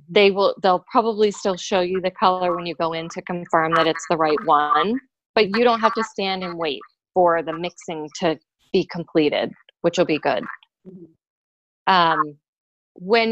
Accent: American